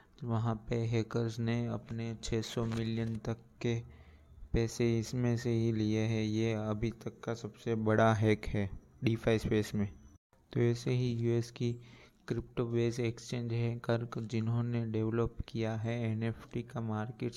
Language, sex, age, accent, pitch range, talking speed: Hindi, male, 20-39, native, 110-115 Hz, 155 wpm